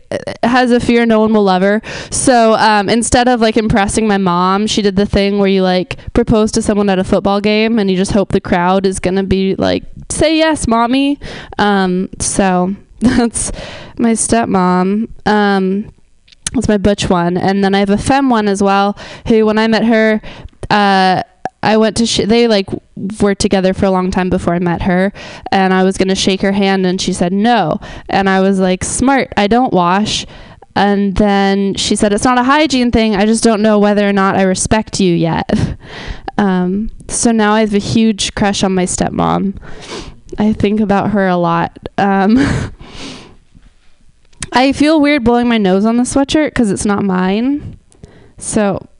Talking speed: 190 wpm